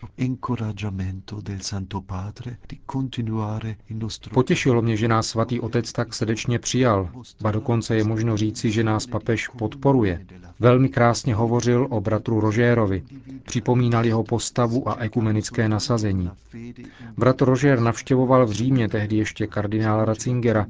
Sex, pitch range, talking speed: male, 105-120 Hz, 115 wpm